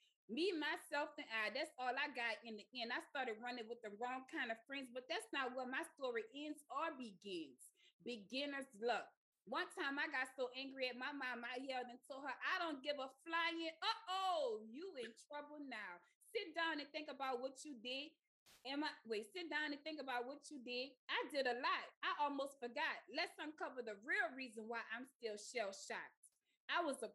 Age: 20-39